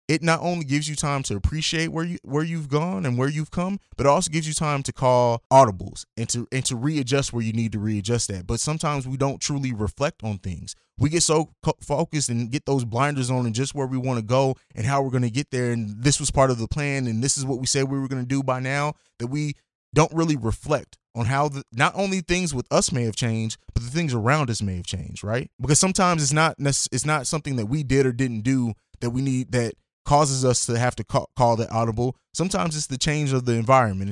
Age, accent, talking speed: 20-39, American, 255 wpm